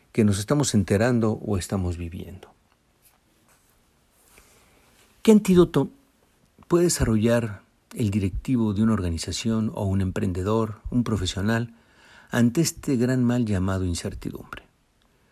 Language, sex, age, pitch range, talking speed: Spanish, male, 60-79, 100-140 Hz, 105 wpm